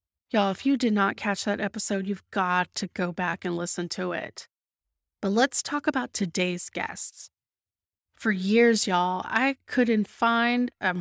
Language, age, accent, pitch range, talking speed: English, 30-49, American, 195-240 Hz, 165 wpm